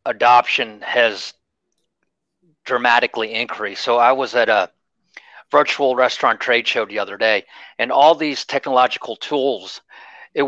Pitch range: 125-150 Hz